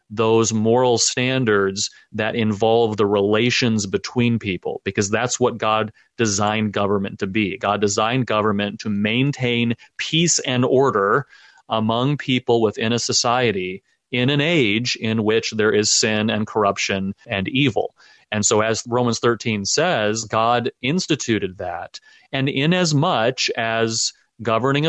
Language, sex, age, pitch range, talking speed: English, male, 30-49, 105-125 Hz, 135 wpm